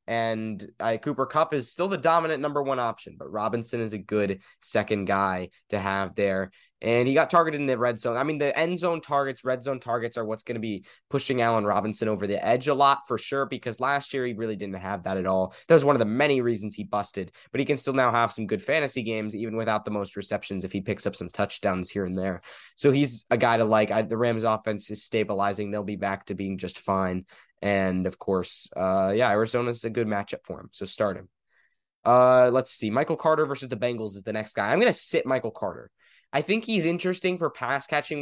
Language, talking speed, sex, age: English, 240 wpm, male, 20-39